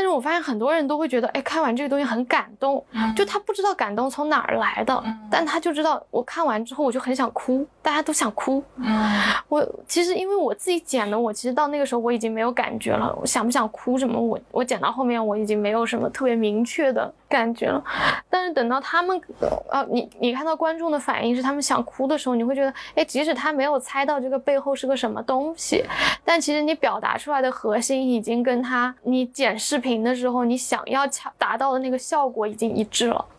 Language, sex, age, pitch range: Chinese, female, 10-29, 230-285 Hz